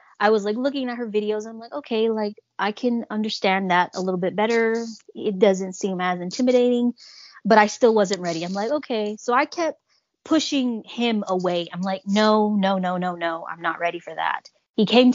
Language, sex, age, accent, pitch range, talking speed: English, female, 20-39, American, 190-235 Hz, 205 wpm